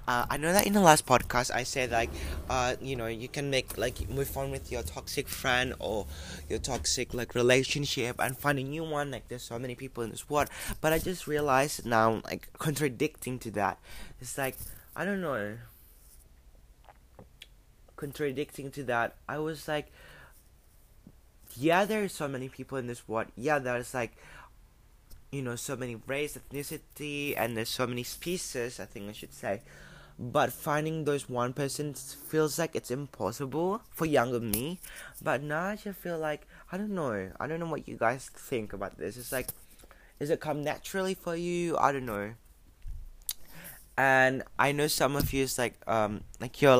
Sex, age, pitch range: male, 20-39, 115-150 Hz